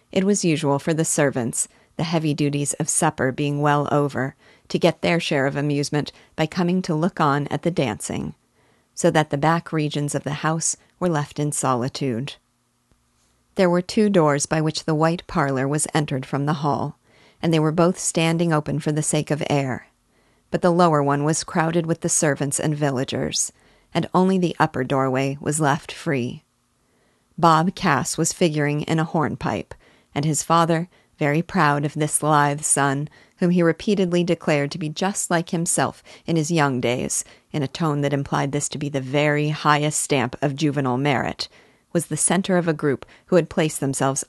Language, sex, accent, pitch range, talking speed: English, female, American, 140-165 Hz, 185 wpm